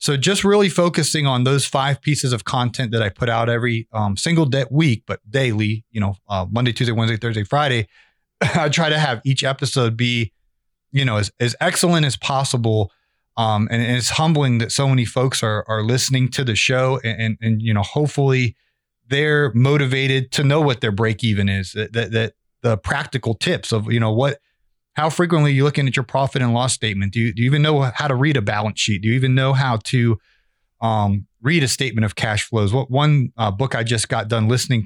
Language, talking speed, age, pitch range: English, 220 wpm, 30-49, 110-135 Hz